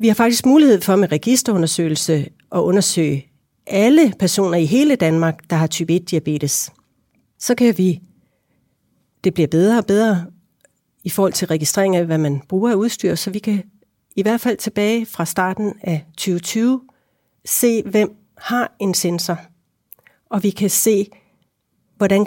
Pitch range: 170-215 Hz